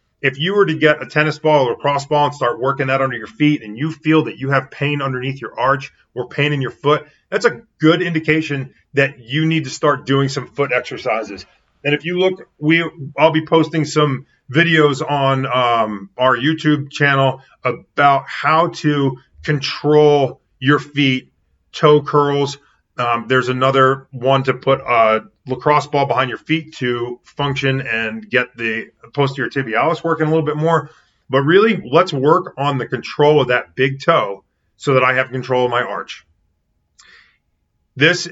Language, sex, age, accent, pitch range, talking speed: English, male, 30-49, American, 125-150 Hz, 180 wpm